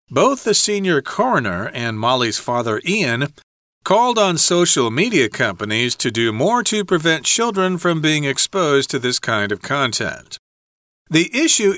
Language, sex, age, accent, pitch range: Chinese, male, 40-59, American, 125-185 Hz